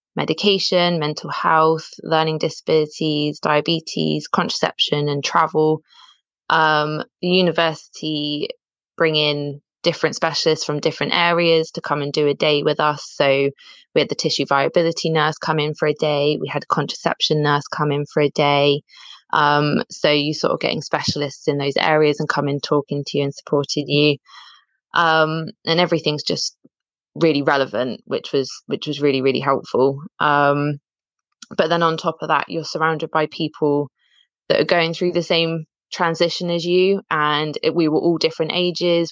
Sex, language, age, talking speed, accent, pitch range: female, English, 20-39, 165 wpm, British, 145-160 Hz